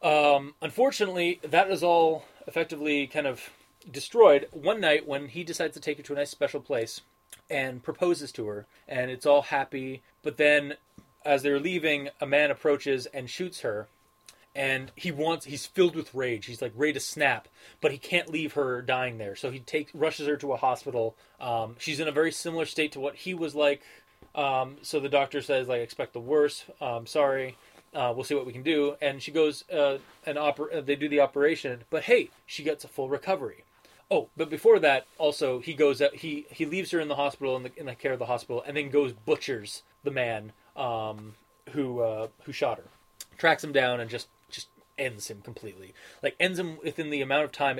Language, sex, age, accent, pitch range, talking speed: English, male, 20-39, American, 130-155 Hz, 210 wpm